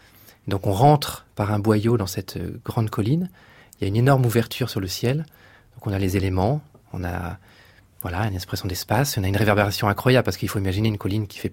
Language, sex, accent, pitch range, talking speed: French, male, French, 100-130 Hz, 225 wpm